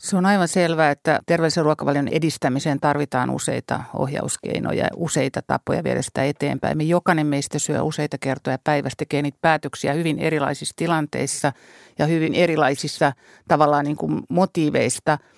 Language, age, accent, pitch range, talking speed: Finnish, 50-69, native, 145-165 Hz, 140 wpm